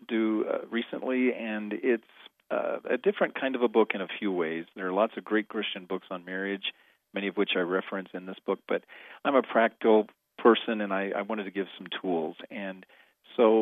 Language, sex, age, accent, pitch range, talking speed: English, male, 40-59, American, 95-115 Hz, 210 wpm